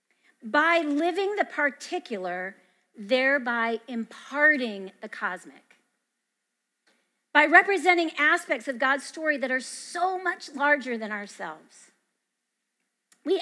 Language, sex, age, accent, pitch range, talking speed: English, female, 40-59, American, 230-320 Hz, 100 wpm